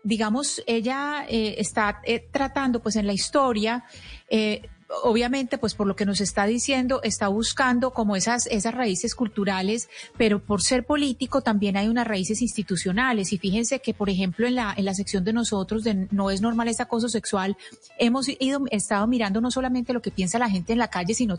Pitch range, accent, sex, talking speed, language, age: 200-235 Hz, Colombian, female, 195 wpm, Spanish, 30-49